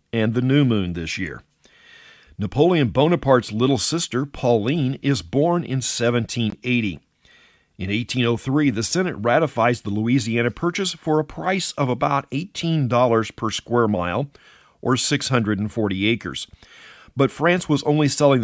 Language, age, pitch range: English, 50-69, 110-145 Hz